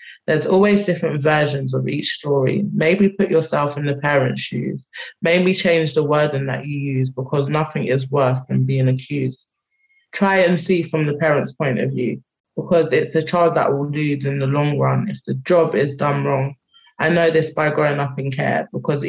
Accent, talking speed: British, 200 wpm